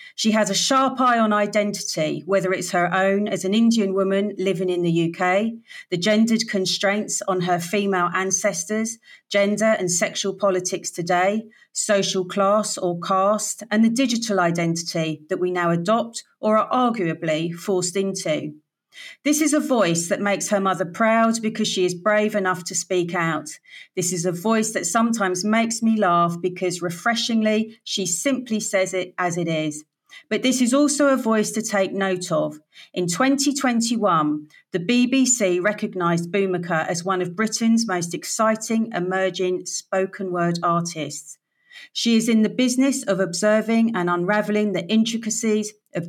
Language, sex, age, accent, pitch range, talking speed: English, female, 40-59, British, 180-220 Hz, 160 wpm